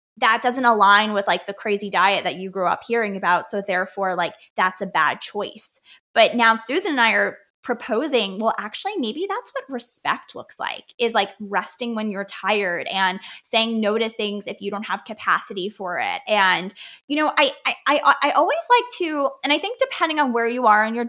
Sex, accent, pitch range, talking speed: female, American, 200-270 Hz, 210 wpm